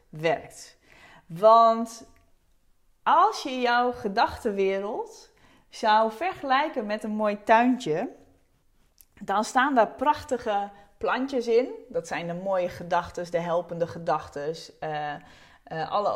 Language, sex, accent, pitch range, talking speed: Dutch, female, Dutch, 175-245 Hz, 110 wpm